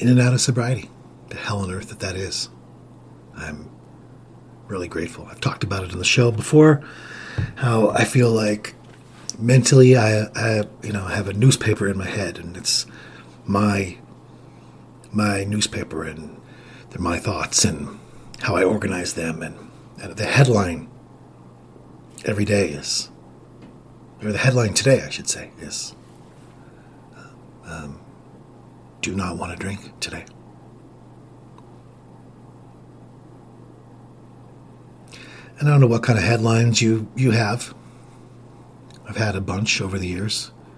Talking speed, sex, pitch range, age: 135 wpm, male, 95-120 Hz, 50-69